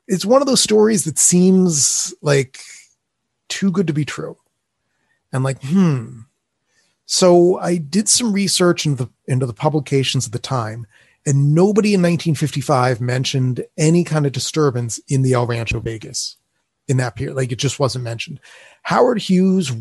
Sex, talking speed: male, 160 wpm